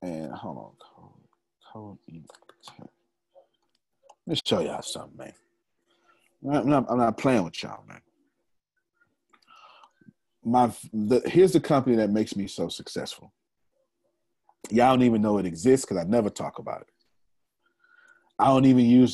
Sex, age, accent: male, 40-59, American